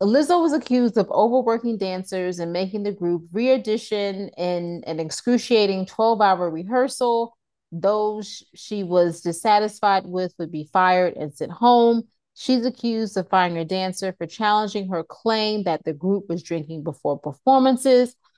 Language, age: English, 30-49